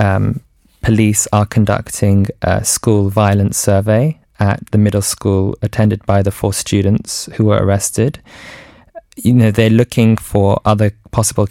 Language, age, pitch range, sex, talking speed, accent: English, 20-39, 100-110 Hz, male, 140 wpm, British